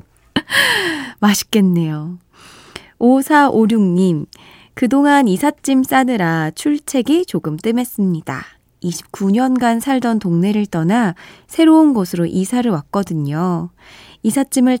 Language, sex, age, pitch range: Korean, female, 20-39, 180-260 Hz